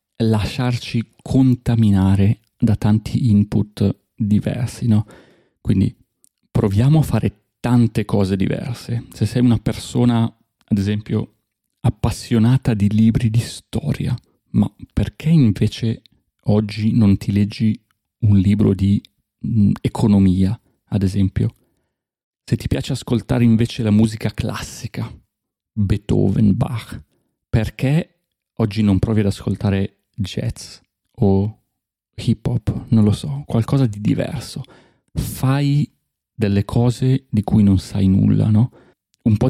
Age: 40-59